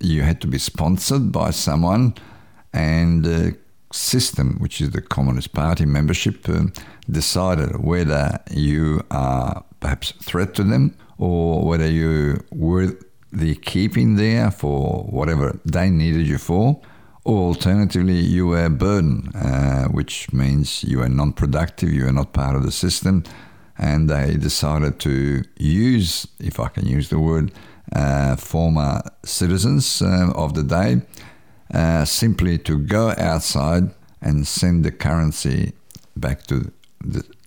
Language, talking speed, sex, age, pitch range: English, 145 wpm, male, 50-69, 70-90 Hz